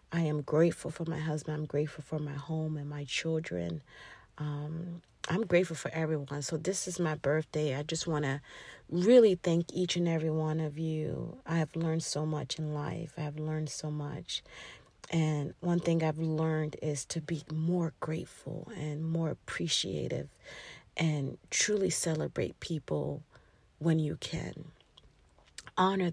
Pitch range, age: 150-180 Hz, 40-59